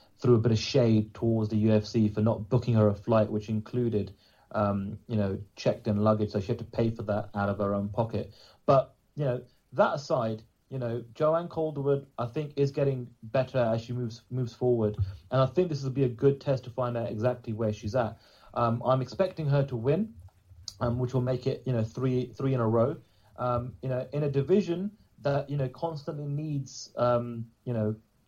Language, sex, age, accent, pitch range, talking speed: English, male, 30-49, British, 110-140 Hz, 215 wpm